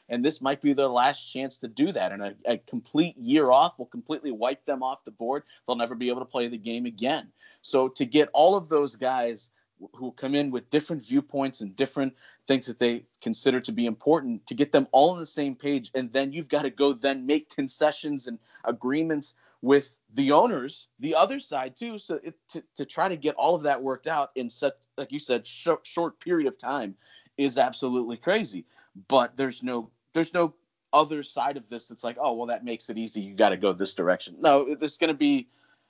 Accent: American